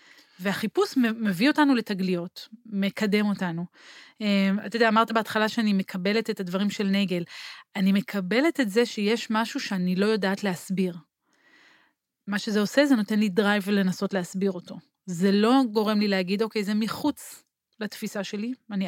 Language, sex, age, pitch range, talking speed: Hebrew, female, 30-49, 190-225 Hz, 150 wpm